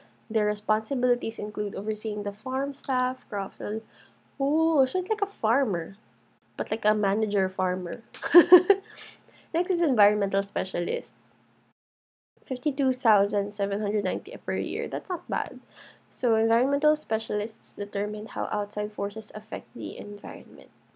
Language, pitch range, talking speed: English, 205-280 Hz, 115 wpm